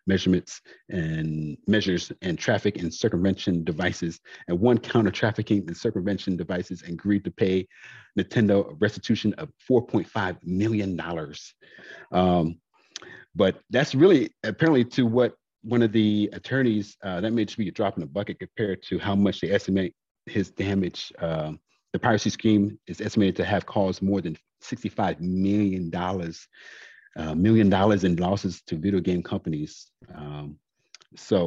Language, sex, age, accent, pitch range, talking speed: English, male, 40-59, American, 90-105 Hz, 155 wpm